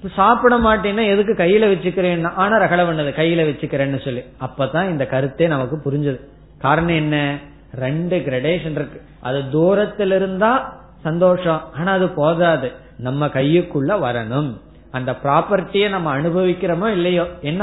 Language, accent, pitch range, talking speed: Tamil, native, 140-185 Hz, 100 wpm